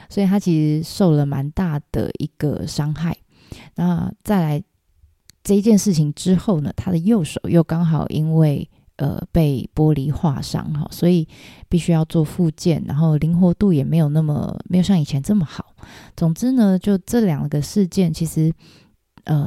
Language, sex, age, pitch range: Chinese, female, 20-39, 155-185 Hz